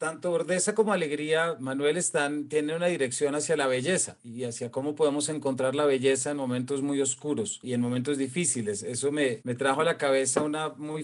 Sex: male